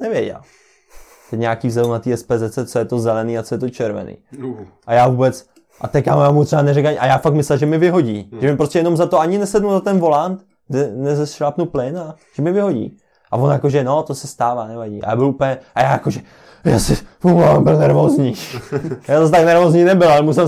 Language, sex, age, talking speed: Czech, male, 20-39, 225 wpm